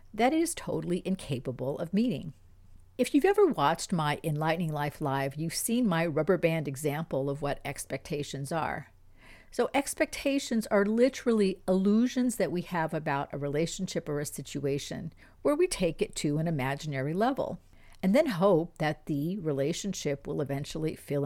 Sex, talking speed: female, 160 wpm